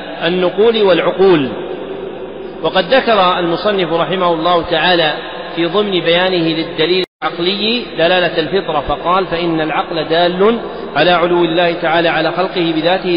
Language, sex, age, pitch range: Arabic, male, 40-59, 165-190 Hz